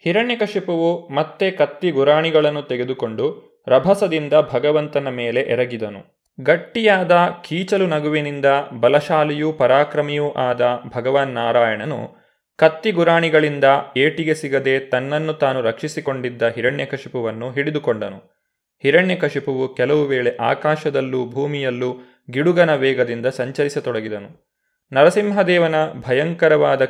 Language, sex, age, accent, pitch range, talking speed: Kannada, male, 20-39, native, 130-170 Hz, 80 wpm